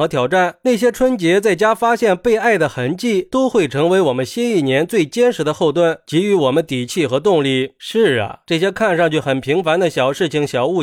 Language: Chinese